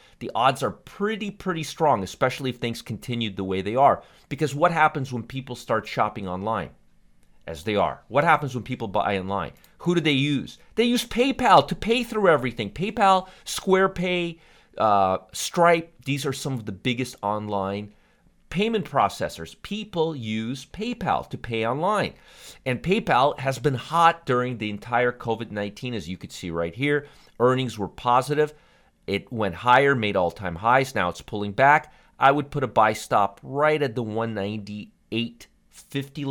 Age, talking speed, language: 40-59, 165 wpm, English